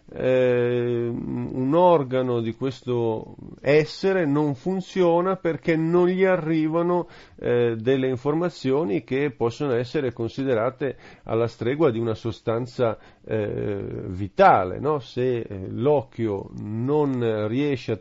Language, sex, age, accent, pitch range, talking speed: Italian, male, 40-59, native, 115-155 Hz, 110 wpm